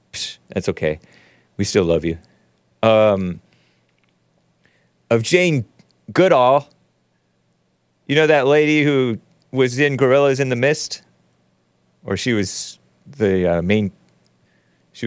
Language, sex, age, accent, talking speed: English, male, 30-49, American, 110 wpm